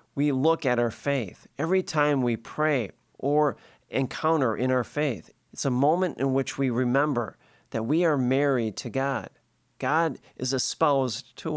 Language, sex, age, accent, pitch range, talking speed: English, male, 40-59, American, 120-155 Hz, 160 wpm